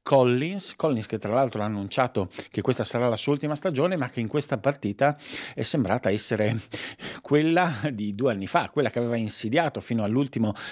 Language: Italian